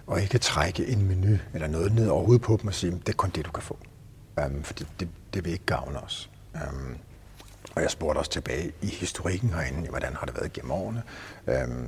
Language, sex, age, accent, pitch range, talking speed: Danish, male, 60-79, native, 75-100 Hz, 240 wpm